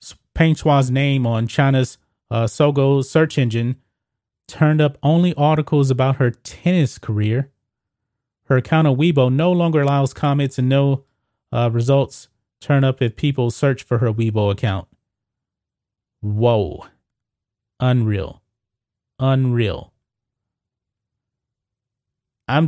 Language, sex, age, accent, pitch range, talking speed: English, male, 30-49, American, 110-140 Hz, 110 wpm